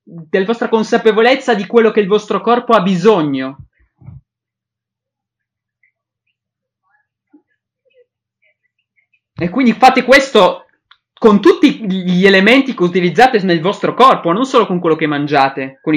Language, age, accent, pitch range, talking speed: English, 20-39, Italian, 150-225 Hz, 115 wpm